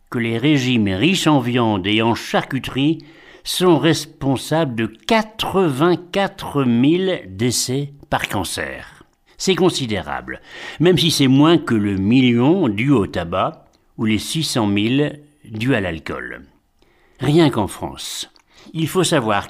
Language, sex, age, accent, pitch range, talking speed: French, male, 60-79, French, 110-160 Hz, 130 wpm